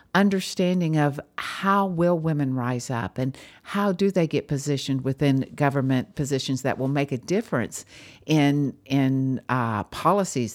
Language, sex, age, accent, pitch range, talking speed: English, female, 50-69, American, 130-175 Hz, 140 wpm